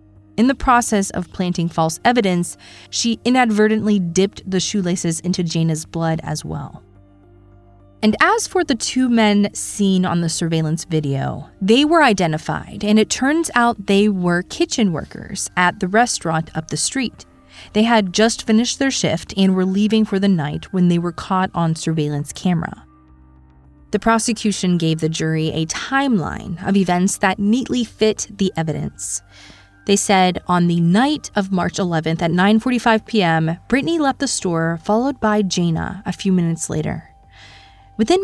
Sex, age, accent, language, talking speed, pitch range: female, 30-49, American, English, 160 wpm, 165-220 Hz